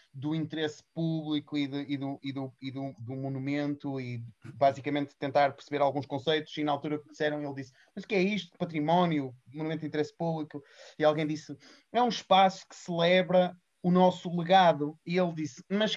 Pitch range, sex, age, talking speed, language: 145-180 Hz, male, 30-49, 200 wpm, Portuguese